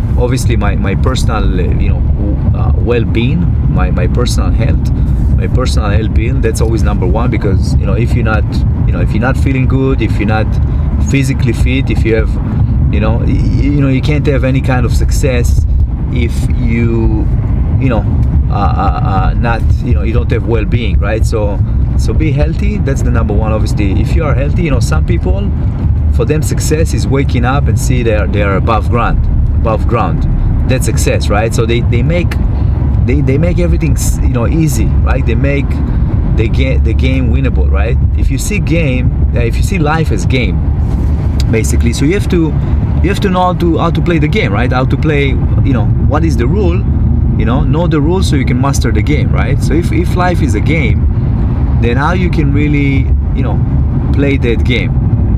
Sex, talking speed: male, 205 wpm